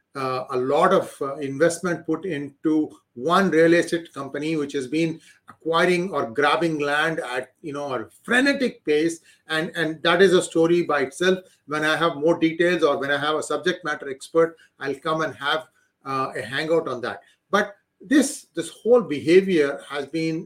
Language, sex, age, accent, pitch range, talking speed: English, male, 40-59, Indian, 140-180 Hz, 180 wpm